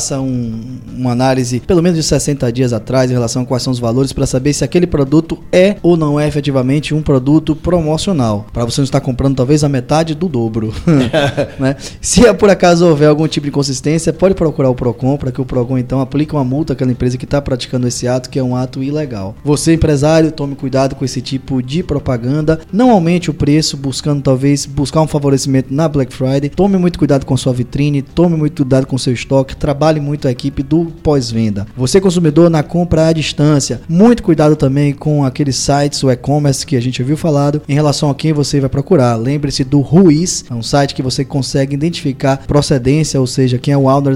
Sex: male